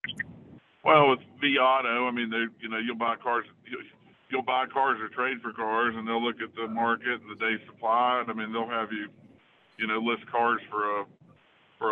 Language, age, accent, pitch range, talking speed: English, 50-69, American, 105-115 Hz, 210 wpm